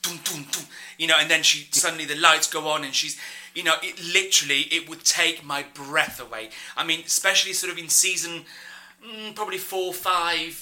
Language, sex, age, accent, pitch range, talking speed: English, male, 30-49, British, 150-180 Hz, 180 wpm